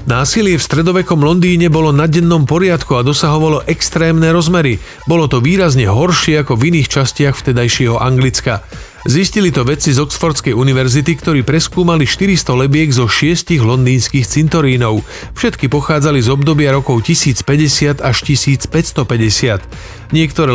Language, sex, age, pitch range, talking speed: Slovak, male, 40-59, 125-155 Hz, 130 wpm